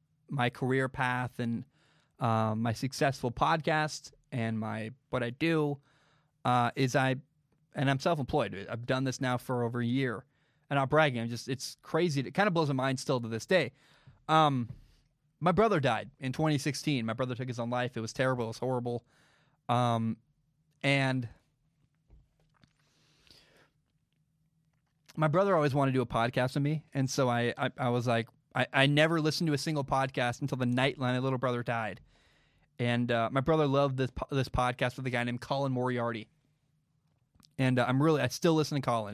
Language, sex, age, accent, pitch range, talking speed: English, male, 20-39, American, 120-150 Hz, 185 wpm